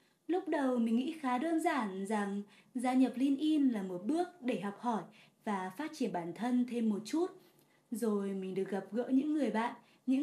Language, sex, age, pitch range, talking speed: Vietnamese, female, 20-39, 215-275 Hz, 205 wpm